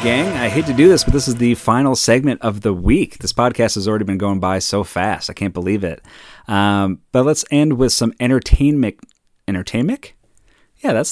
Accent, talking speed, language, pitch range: American, 205 wpm, English, 90-120 Hz